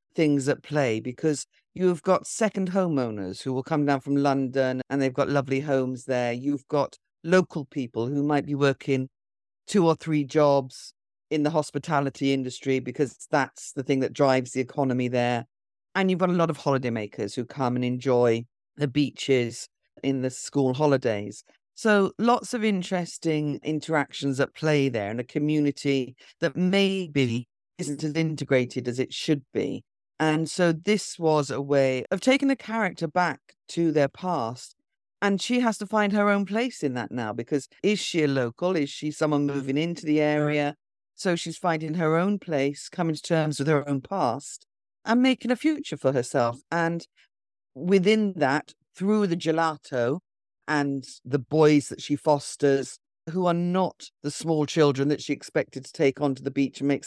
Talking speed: 175 wpm